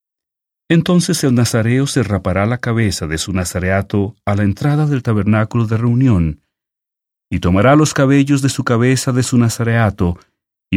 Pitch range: 95-130 Hz